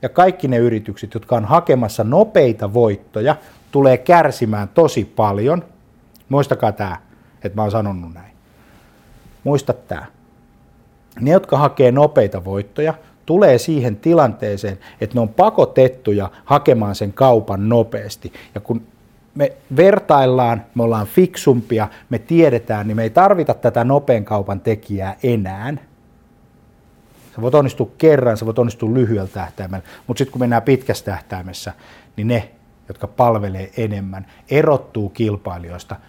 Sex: male